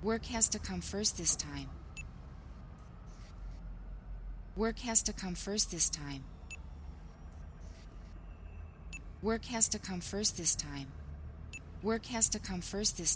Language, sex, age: Chinese, female, 30-49